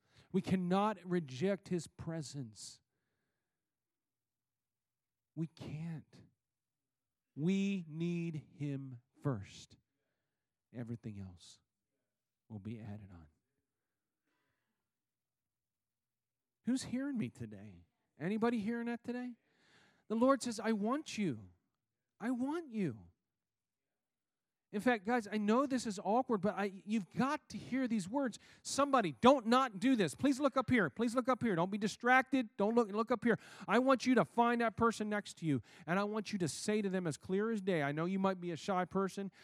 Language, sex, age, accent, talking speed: English, male, 40-59, American, 155 wpm